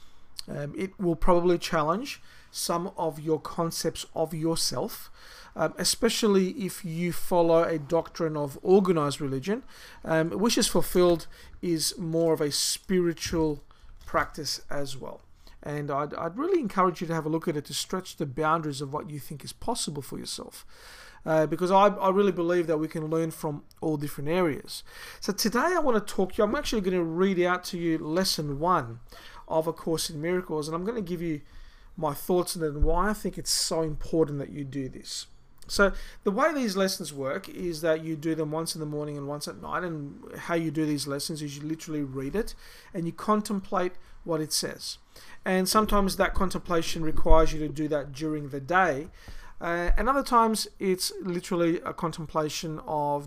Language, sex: English, male